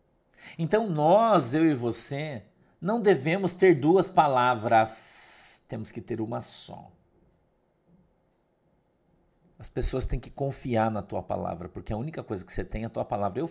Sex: male